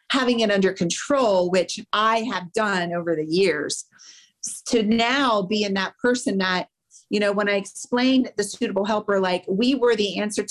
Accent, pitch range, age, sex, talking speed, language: American, 185-230 Hz, 40-59, female, 175 wpm, English